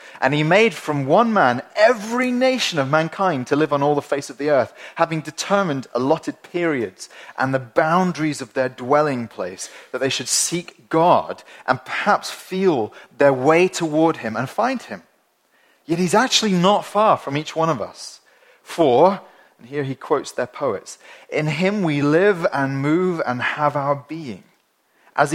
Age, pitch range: 30-49, 125-170 Hz